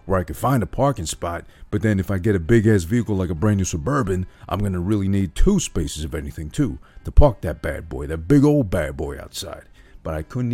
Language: English